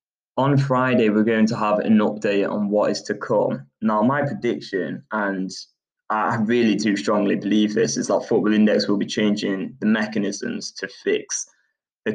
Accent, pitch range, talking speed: British, 105-120 Hz, 175 wpm